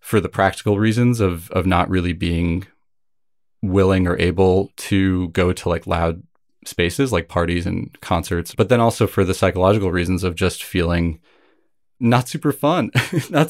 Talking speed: 160 wpm